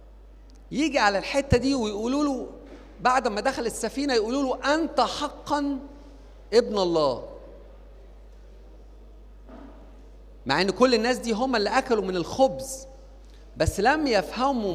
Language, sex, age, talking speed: Arabic, male, 50-69, 110 wpm